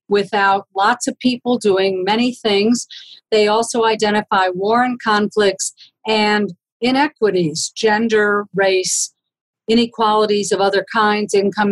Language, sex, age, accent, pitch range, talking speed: English, female, 50-69, American, 200-240 Hz, 115 wpm